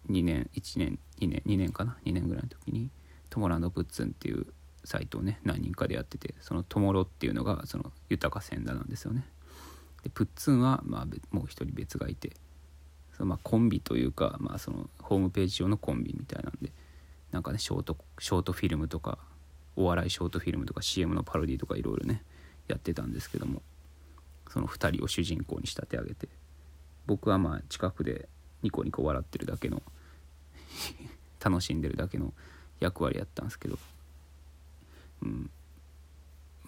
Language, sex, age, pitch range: Japanese, male, 20-39, 70-90 Hz